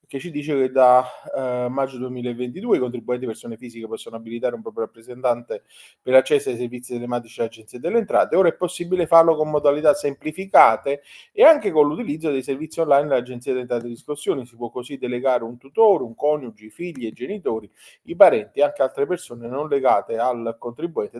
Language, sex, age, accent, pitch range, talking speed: Italian, male, 30-49, native, 115-145 Hz, 190 wpm